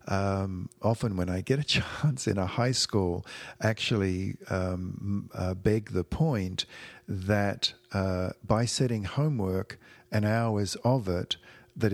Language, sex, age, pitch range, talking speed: English, male, 50-69, 95-120 Hz, 135 wpm